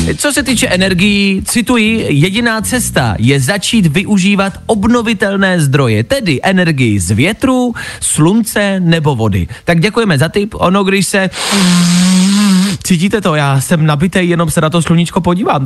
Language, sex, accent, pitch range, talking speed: Czech, male, native, 135-200 Hz, 140 wpm